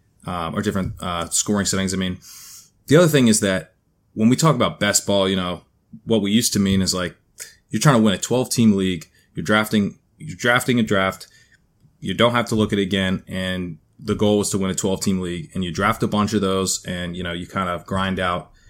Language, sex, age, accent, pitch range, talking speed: English, male, 20-39, American, 95-110 Hz, 235 wpm